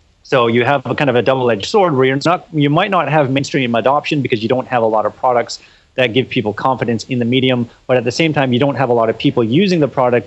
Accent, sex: American, male